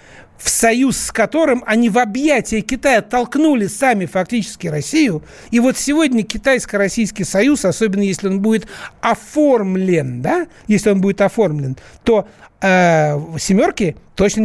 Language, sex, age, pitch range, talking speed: Russian, male, 60-79, 165-230 Hz, 130 wpm